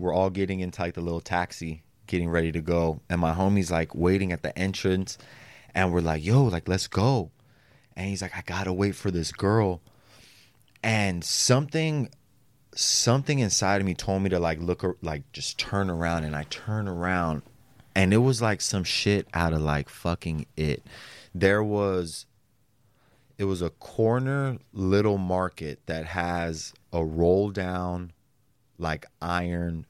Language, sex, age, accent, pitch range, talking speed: English, male, 30-49, American, 80-105 Hz, 165 wpm